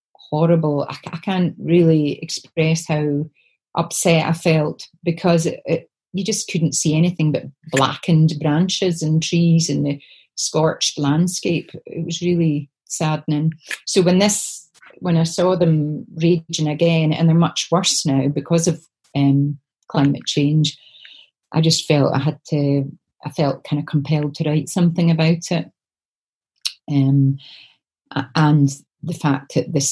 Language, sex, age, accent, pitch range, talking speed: English, female, 30-49, British, 145-165 Hz, 140 wpm